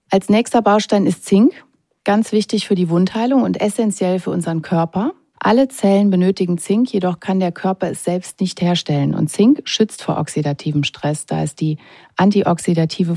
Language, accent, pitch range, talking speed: German, German, 165-200 Hz, 170 wpm